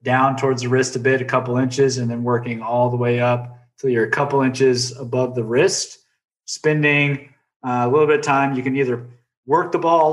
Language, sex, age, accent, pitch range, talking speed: English, male, 20-39, American, 120-140 Hz, 220 wpm